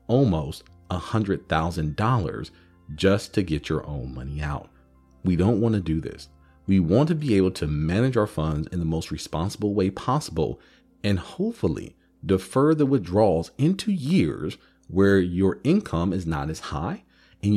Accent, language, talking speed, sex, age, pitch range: American, English, 165 wpm, male, 40-59, 80-110 Hz